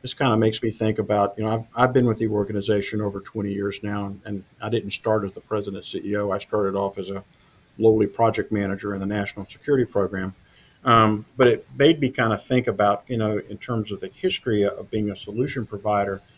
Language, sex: English, male